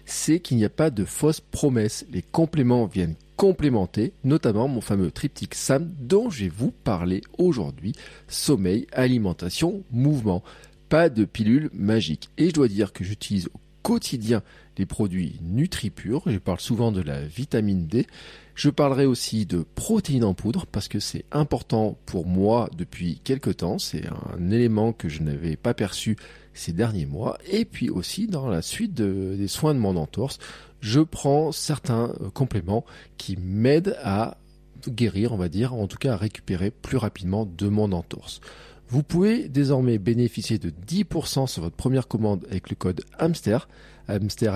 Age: 40-59